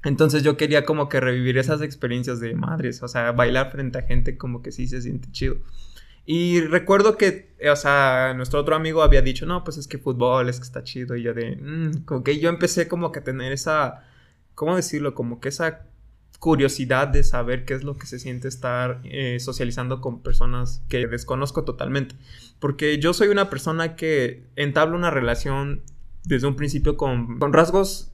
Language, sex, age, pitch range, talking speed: Spanish, male, 20-39, 125-145 Hz, 195 wpm